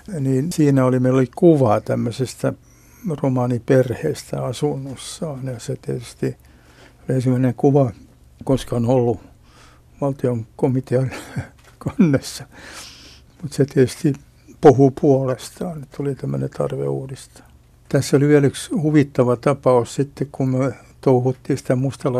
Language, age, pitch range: Finnish, 60-79, 125-140 Hz